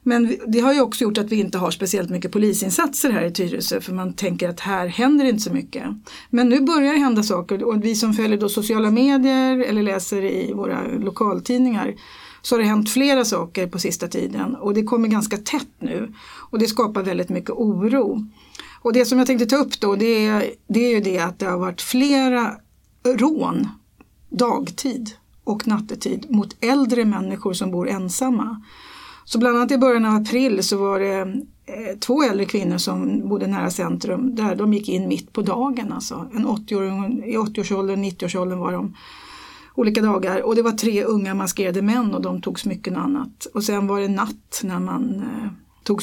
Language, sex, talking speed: Swedish, female, 190 wpm